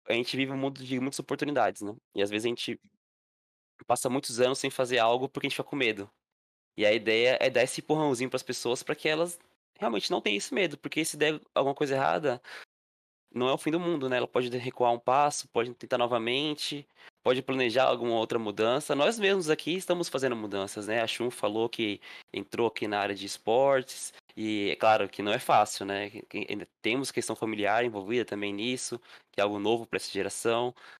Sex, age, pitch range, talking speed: male, 20-39, 110-145 Hz, 215 wpm